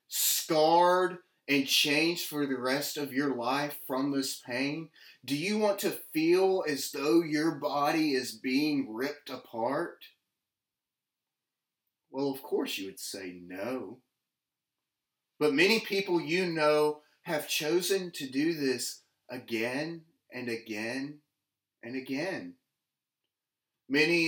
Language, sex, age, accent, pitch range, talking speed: English, male, 30-49, American, 140-185 Hz, 120 wpm